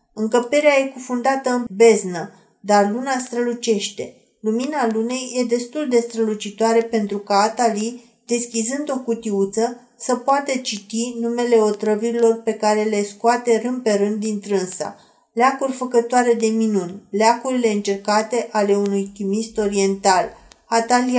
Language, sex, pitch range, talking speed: Romanian, female, 205-240 Hz, 125 wpm